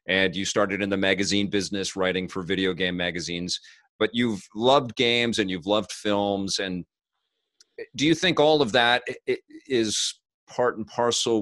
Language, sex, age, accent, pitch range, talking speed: English, male, 40-59, American, 95-115 Hz, 165 wpm